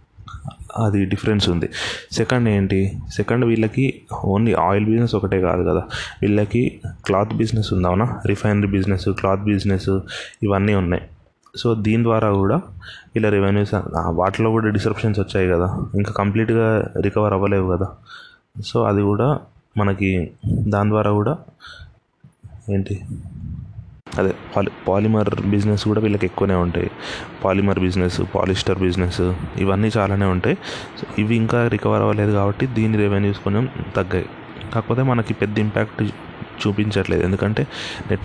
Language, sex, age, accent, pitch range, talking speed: Telugu, male, 20-39, native, 95-110 Hz, 125 wpm